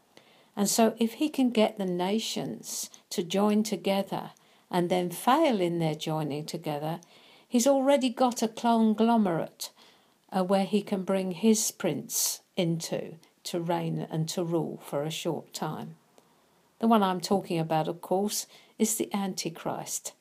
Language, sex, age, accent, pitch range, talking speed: English, female, 50-69, British, 170-210 Hz, 145 wpm